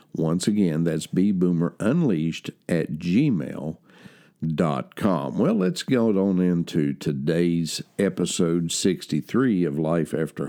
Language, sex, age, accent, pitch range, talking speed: English, male, 60-79, American, 80-95 Hz, 95 wpm